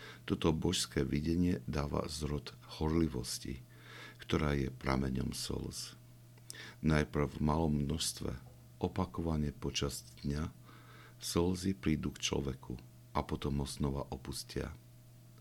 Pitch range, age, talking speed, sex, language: 65-85 Hz, 60-79, 95 wpm, male, Slovak